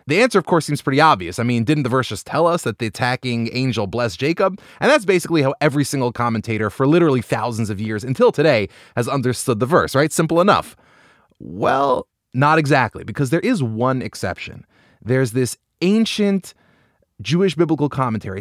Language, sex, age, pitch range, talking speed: English, male, 30-49, 120-165 Hz, 185 wpm